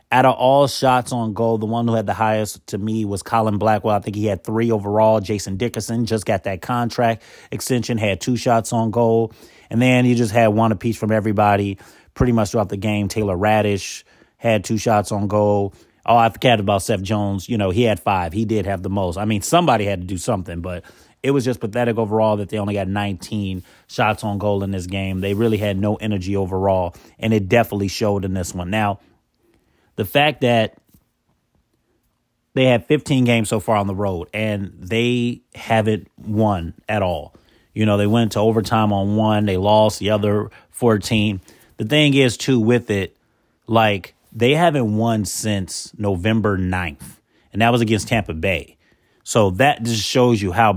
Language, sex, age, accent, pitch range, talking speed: English, male, 30-49, American, 100-115 Hz, 195 wpm